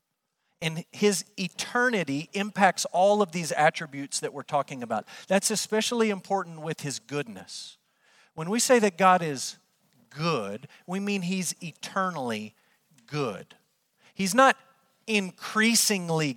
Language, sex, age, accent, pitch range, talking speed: English, male, 40-59, American, 160-205 Hz, 120 wpm